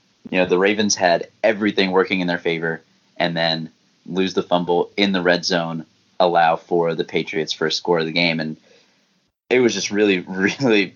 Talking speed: 185 wpm